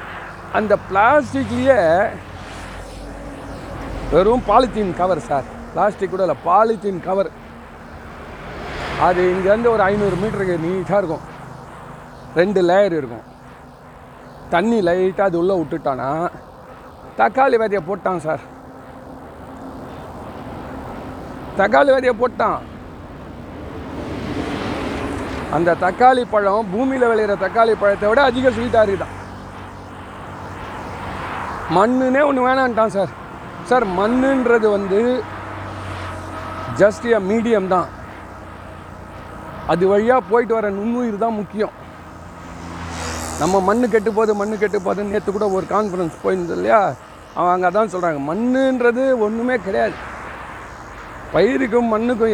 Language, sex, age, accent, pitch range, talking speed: Tamil, male, 40-59, native, 160-235 Hz, 90 wpm